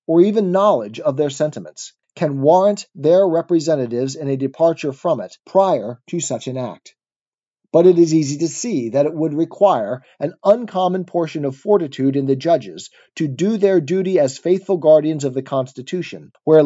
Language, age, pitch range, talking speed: English, 40-59, 140-185 Hz, 175 wpm